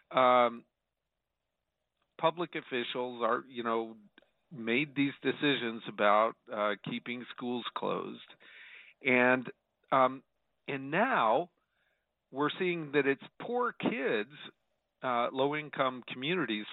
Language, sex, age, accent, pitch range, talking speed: English, male, 50-69, American, 120-155 Hz, 100 wpm